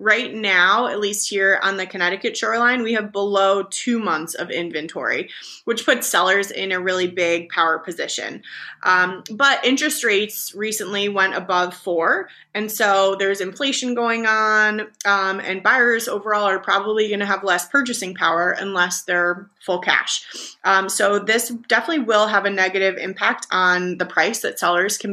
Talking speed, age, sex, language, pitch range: 165 wpm, 20-39, female, English, 180-215 Hz